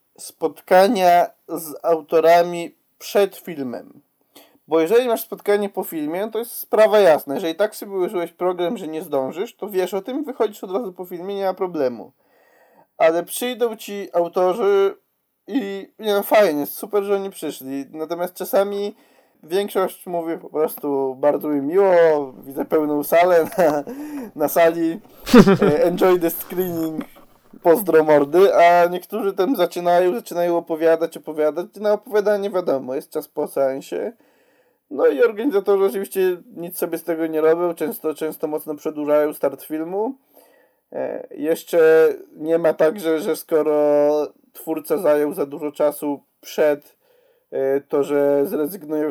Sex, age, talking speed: male, 20-39, 140 wpm